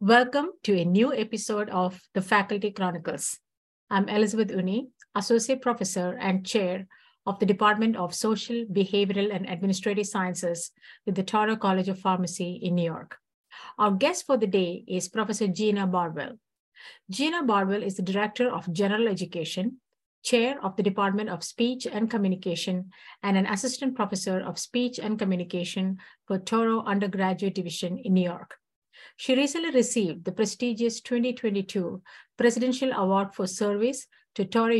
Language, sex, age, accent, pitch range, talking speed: English, female, 50-69, Indian, 190-235 Hz, 150 wpm